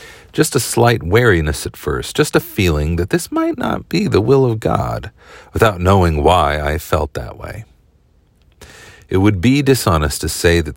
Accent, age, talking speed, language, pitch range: American, 40-59, 180 wpm, English, 80-110 Hz